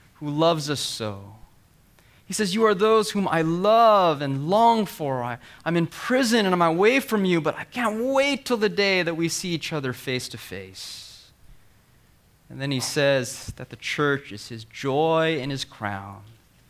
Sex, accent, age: male, American, 20-39